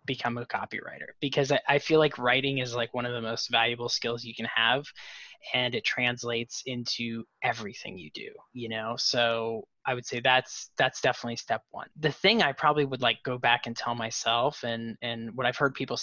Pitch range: 120-140 Hz